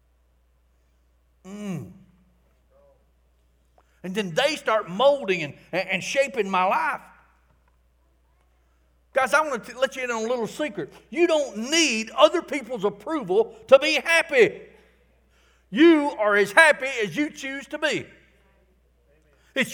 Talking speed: 125 wpm